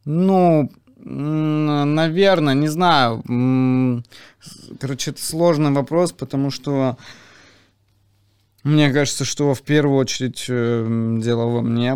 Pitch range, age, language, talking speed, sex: 110-130 Hz, 20-39, Russian, 95 wpm, male